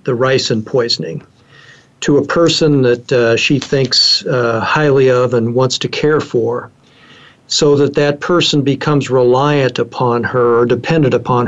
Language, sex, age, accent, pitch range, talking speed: English, male, 50-69, American, 125-145 Hz, 150 wpm